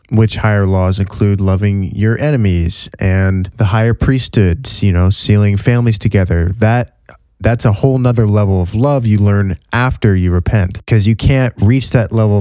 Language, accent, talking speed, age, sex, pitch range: English, American, 170 wpm, 20-39, male, 105-135 Hz